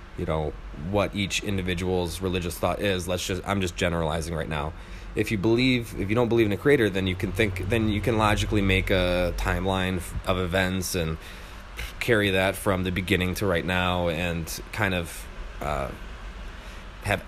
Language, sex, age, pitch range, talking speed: English, male, 20-39, 90-105 Hz, 175 wpm